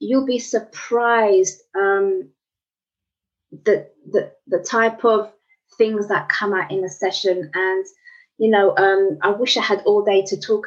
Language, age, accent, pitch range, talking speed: English, 20-39, British, 195-255 Hz, 155 wpm